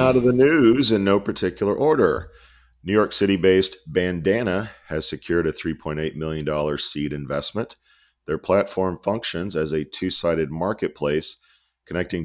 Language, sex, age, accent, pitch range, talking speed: English, male, 40-59, American, 80-100 Hz, 130 wpm